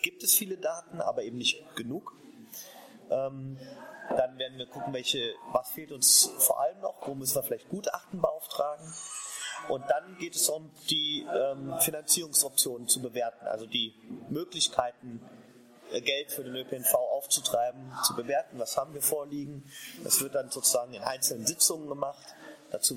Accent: German